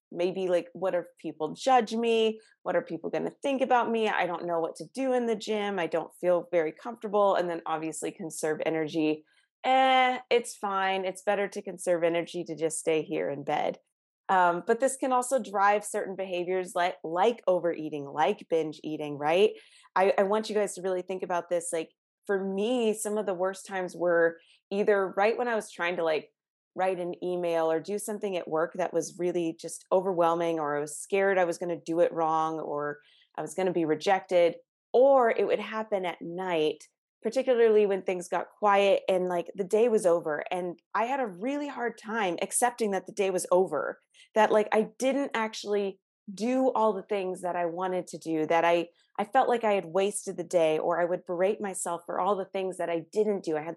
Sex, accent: female, American